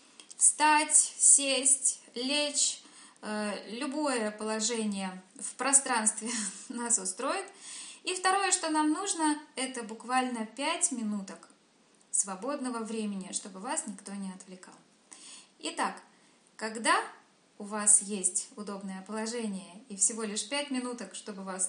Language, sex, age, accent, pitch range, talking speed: Russian, female, 10-29, native, 200-255 Hz, 110 wpm